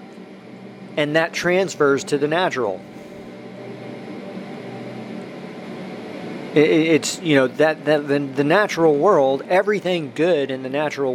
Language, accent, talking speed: English, American, 110 wpm